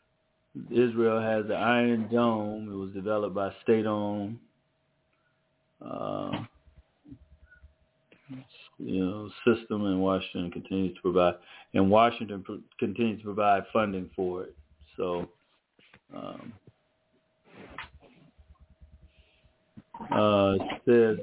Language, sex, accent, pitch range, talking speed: English, male, American, 95-110 Hz, 90 wpm